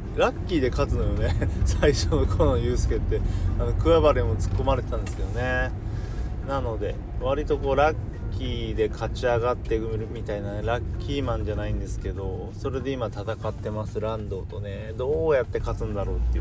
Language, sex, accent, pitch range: Japanese, male, native, 65-110 Hz